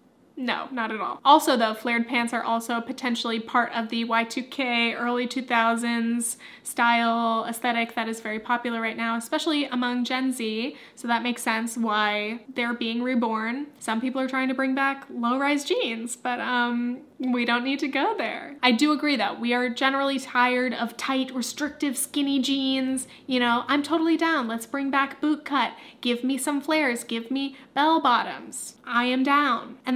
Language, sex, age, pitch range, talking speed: English, female, 10-29, 230-275 Hz, 180 wpm